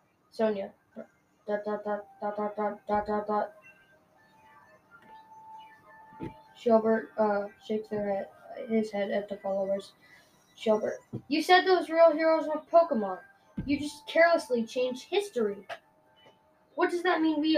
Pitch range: 220-310 Hz